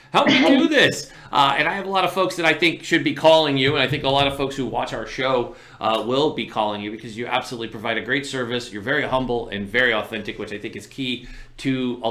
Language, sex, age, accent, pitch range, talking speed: English, male, 30-49, American, 110-150 Hz, 275 wpm